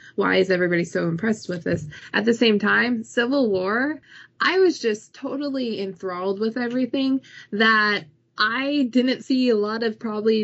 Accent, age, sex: American, 20-39, female